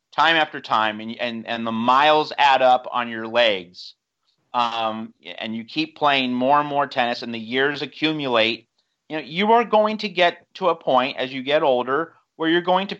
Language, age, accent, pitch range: English, 40-59, American, 125-170 Hz